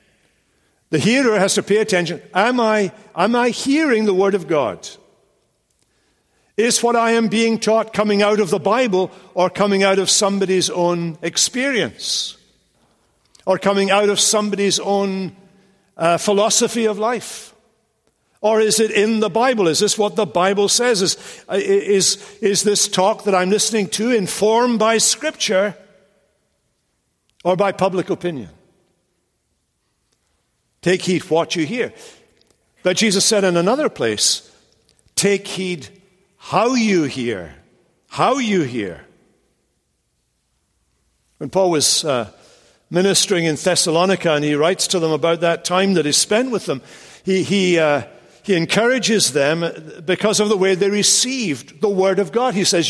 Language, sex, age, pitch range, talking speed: English, male, 60-79, 180-220 Hz, 145 wpm